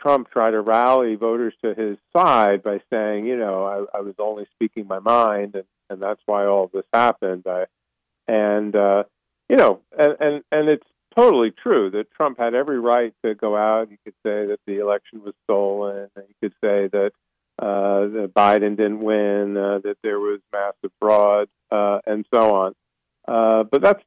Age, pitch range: 50-69, 95-110 Hz